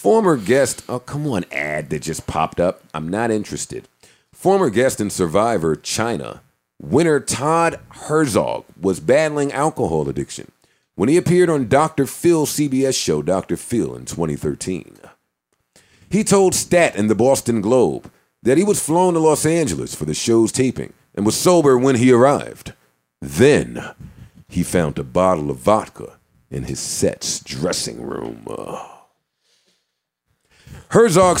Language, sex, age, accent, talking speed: English, male, 50-69, American, 140 wpm